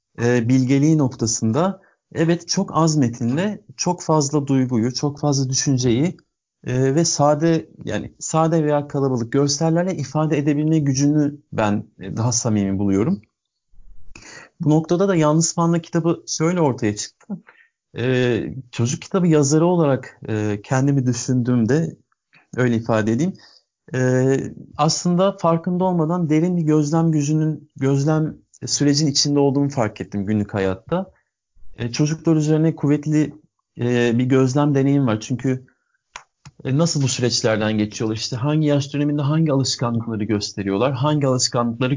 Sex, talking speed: male, 115 wpm